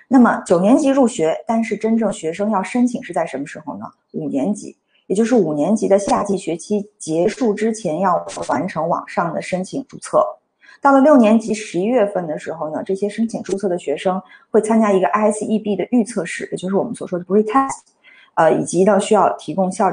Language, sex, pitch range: Chinese, female, 190-235 Hz